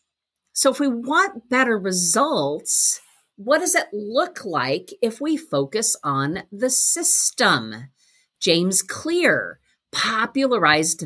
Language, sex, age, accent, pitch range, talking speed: English, female, 50-69, American, 205-270 Hz, 110 wpm